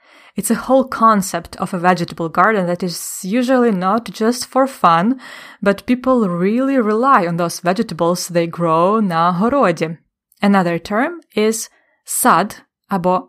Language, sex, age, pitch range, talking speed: English, female, 20-39, 175-230 Hz, 140 wpm